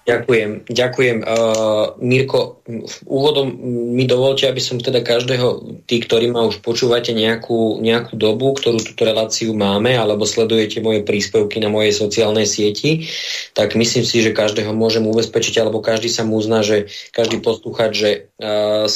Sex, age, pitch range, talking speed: male, 20-39, 110-120 Hz, 150 wpm